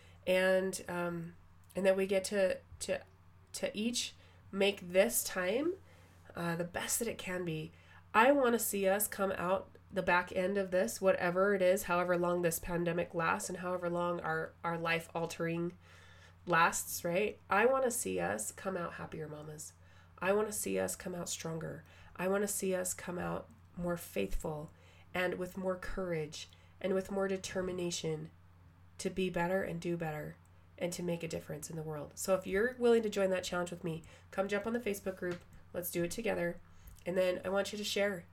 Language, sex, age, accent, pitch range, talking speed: English, female, 20-39, American, 155-190 Hz, 190 wpm